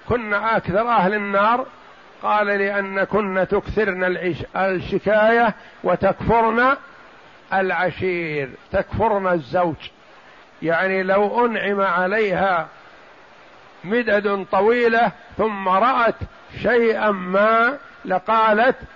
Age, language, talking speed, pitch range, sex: 60-79, Arabic, 75 wpm, 190-220 Hz, male